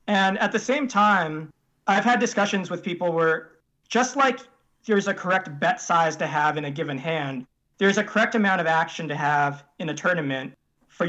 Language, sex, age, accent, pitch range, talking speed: English, male, 40-59, American, 160-210 Hz, 195 wpm